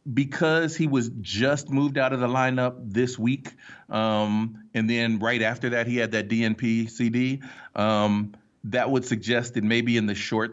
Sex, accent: male, American